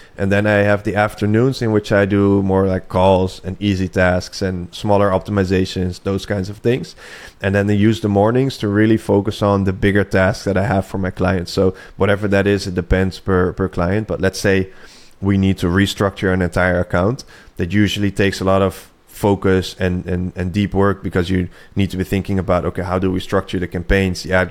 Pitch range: 95-100 Hz